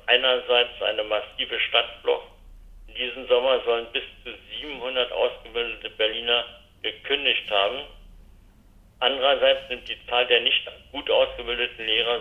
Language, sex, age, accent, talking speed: German, male, 60-79, German, 120 wpm